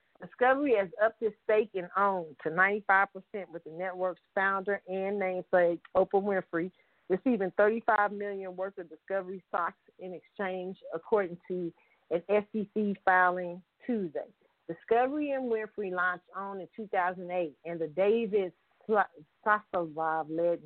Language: English